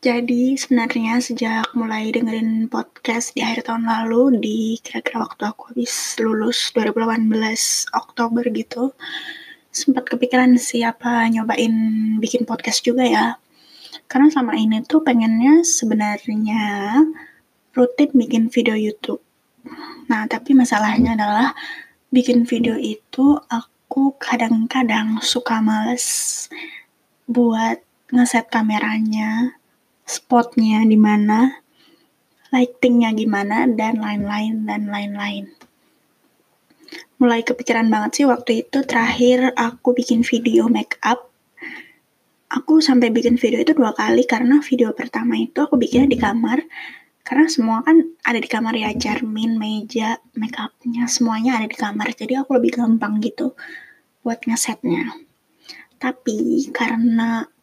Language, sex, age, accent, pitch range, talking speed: Indonesian, female, 20-39, native, 225-255 Hz, 110 wpm